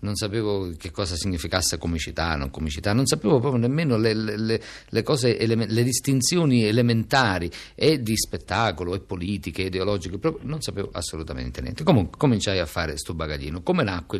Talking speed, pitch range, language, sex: 160 wpm, 85-115 Hz, Italian, male